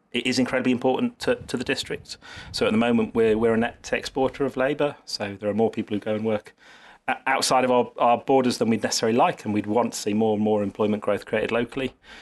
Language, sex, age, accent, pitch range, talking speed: English, male, 30-49, British, 105-120 Hz, 245 wpm